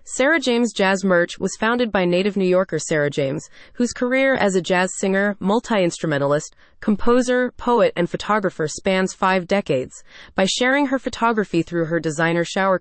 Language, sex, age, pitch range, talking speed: English, female, 30-49, 175-235 Hz, 160 wpm